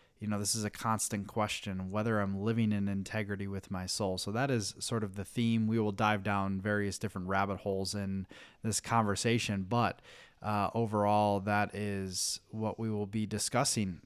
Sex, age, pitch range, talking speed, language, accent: male, 20-39, 100-110 Hz, 185 wpm, English, American